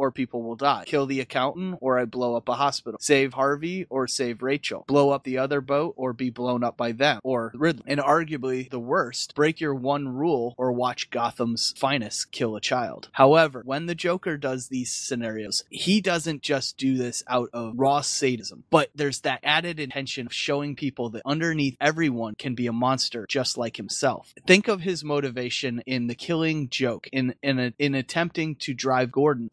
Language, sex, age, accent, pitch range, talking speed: English, male, 30-49, American, 125-150 Hz, 190 wpm